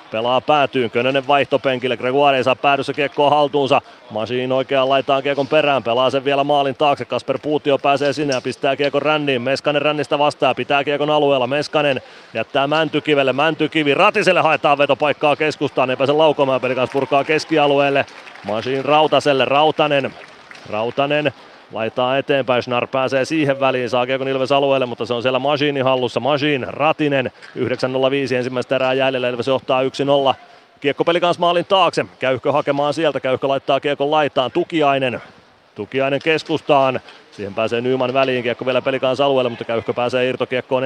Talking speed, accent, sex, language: 150 wpm, native, male, Finnish